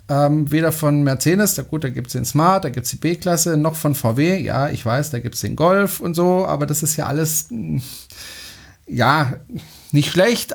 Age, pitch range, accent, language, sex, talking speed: 40-59, 140-175 Hz, German, German, male, 205 wpm